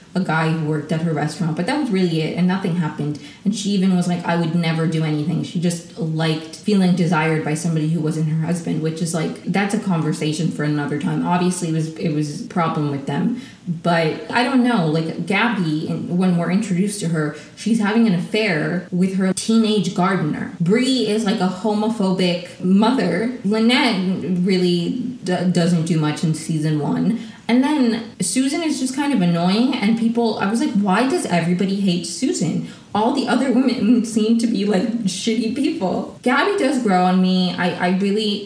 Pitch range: 165-210 Hz